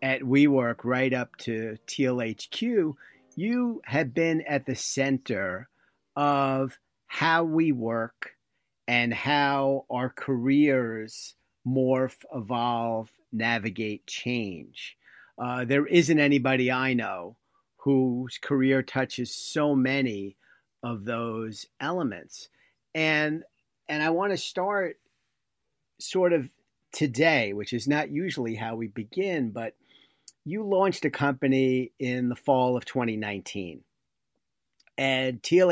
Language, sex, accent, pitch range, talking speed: English, male, American, 115-145 Hz, 110 wpm